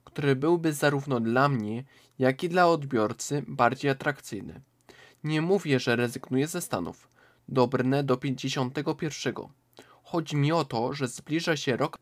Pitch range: 125-155 Hz